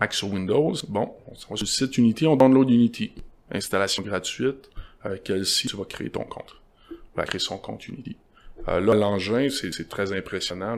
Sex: male